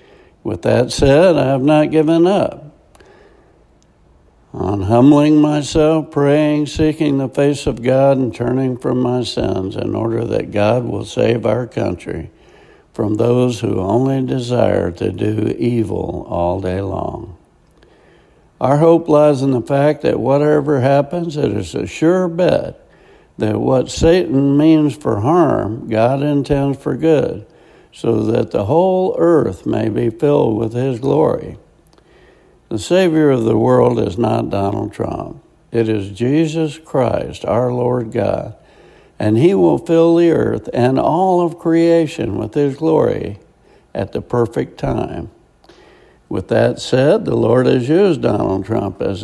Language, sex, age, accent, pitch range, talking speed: English, male, 60-79, American, 110-155 Hz, 145 wpm